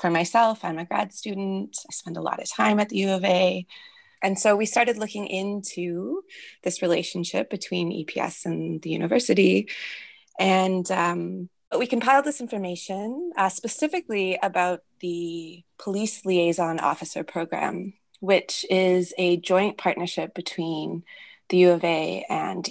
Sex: female